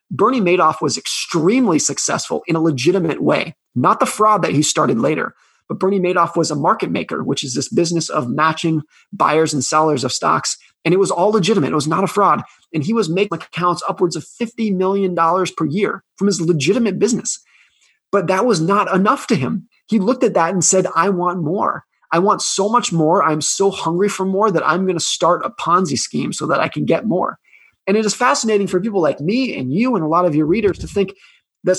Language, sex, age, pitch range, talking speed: English, male, 30-49, 160-200 Hz, 225 wpm